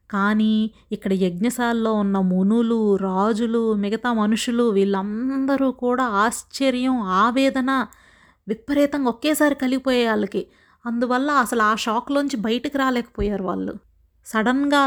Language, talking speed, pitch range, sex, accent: Telugu, 95 wpm, 205-240 Hz, female, native